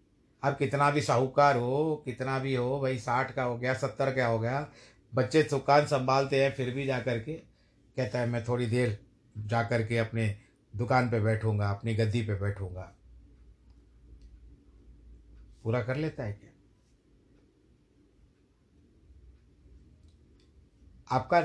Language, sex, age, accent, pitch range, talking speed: Hindi, male, 60-79, native, 105-135 Hz, 130 wpm